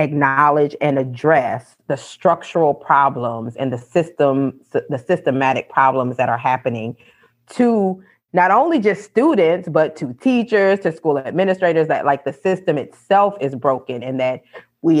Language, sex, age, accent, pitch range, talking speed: English, female, 30-49, American, 135-185 Hz, 145 wpm